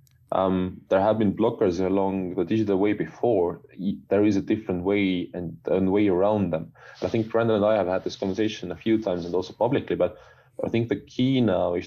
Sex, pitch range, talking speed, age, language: male, 95-120 Hz, 220 wpm, 30-49, English